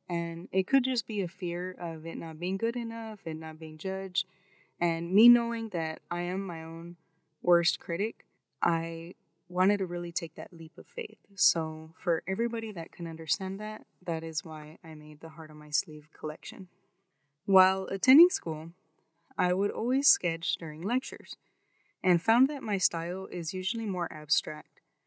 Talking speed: 170 wpm